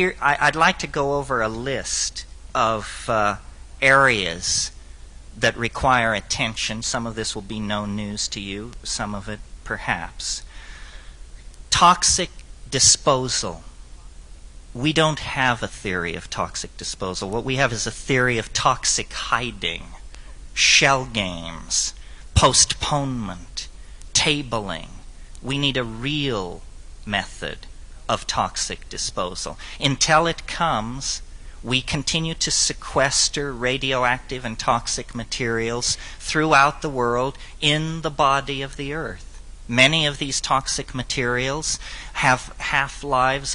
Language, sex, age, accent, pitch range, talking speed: English, male, 40-59, American, 90-140 Hz, 115 wpm